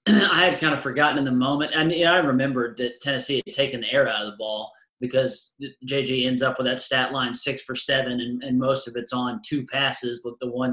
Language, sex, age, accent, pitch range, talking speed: English, male, 30-49, American, 130-155 Hz, 250 wpm